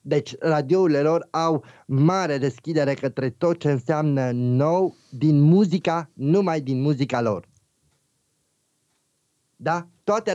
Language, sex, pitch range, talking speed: Romanian, male, 125-165 Hz, 110 wpm